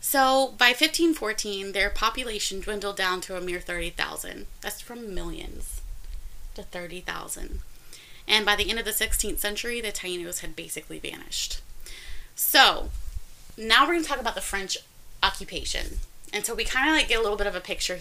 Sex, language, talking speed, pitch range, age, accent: female, English, 175 wpm, 180-225 Hz, 20-39, American